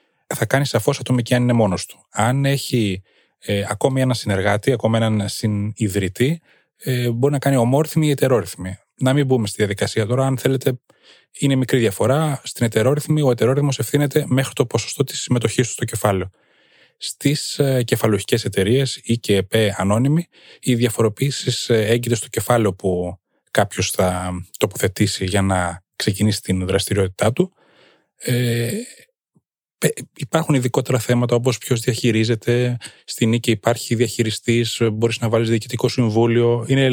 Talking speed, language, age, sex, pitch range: 140 wpm, Greek, 20-39, male, 105-130 Hz